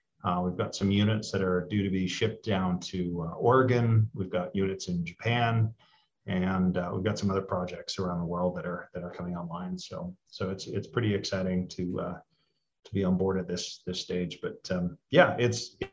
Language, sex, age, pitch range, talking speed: English, male, 30-49, 95-110 Hz, 210 wpm